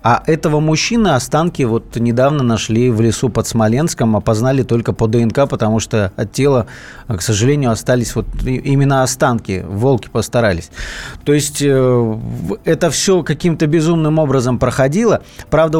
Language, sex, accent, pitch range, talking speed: Russian, male, native, 115-155 Hz, 135 wpm